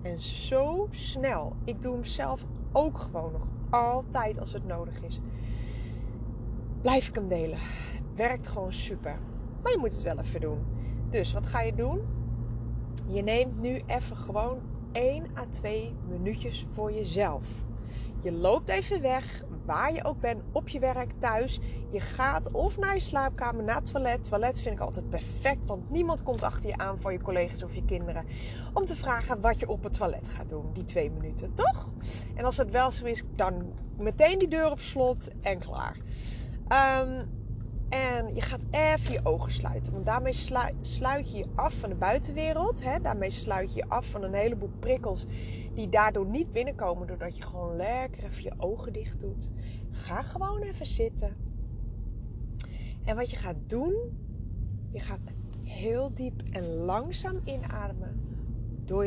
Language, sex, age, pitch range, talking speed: Dutch, female, 30-49, 110-135 Hz, 170 wpm